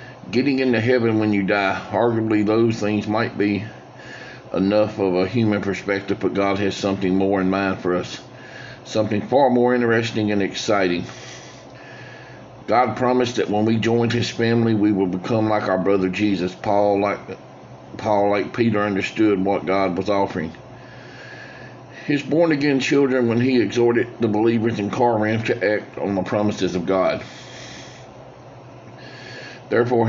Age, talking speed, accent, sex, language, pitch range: 50-69, 150 wpm, American, male, English, 95-115 Hz